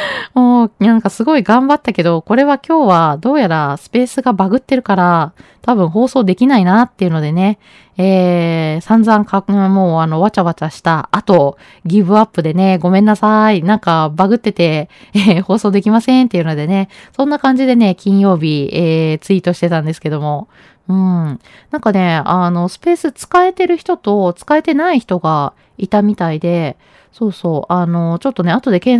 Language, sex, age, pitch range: Japanese, female, 20-39, 175-250 Hz